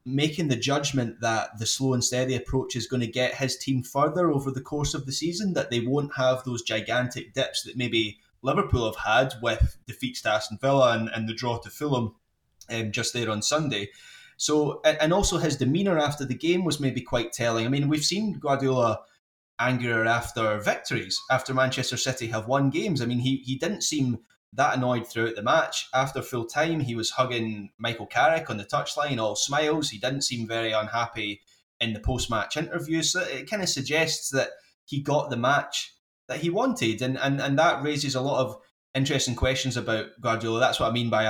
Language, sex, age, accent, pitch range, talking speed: English, male, 20-39, British, 115-140 Hz, 205 wpm